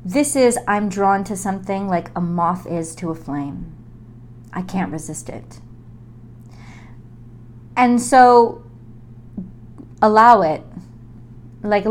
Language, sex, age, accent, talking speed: English, female, 30-49, American, 110 wpm